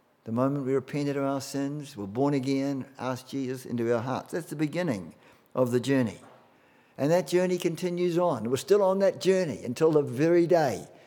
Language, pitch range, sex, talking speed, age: English, 125-150 Hz, male, 190 wpm, 60-79